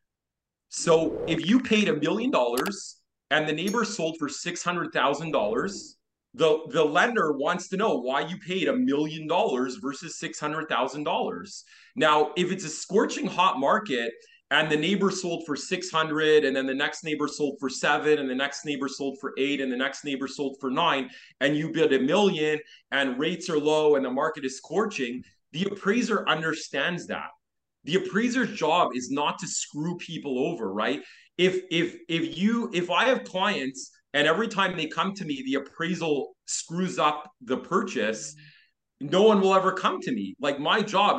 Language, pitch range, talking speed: English, 145-190 Hz, 175 wpm